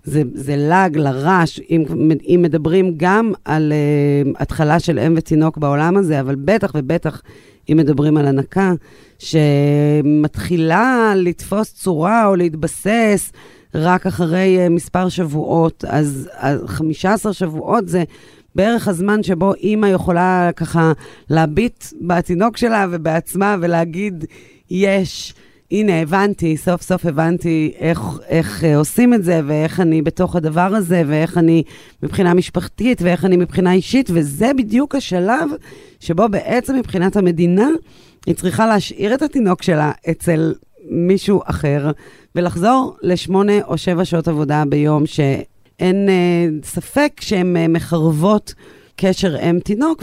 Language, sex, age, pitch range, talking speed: Hebrew, female, 30-49, 155-195 Hz, 125 wpm